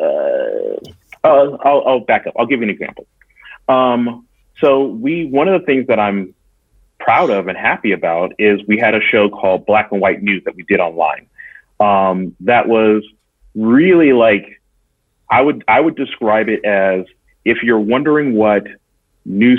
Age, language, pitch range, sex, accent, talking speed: 30-49, English, 95-115 Hz, male, American, 170 wpm